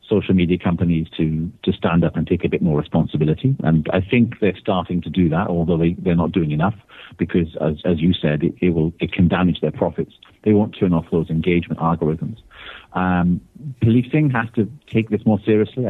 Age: 40-59